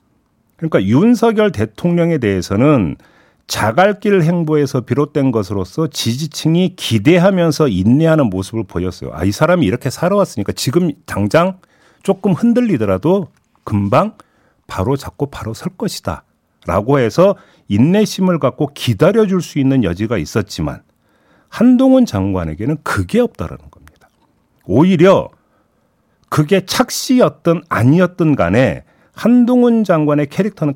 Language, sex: Korean, male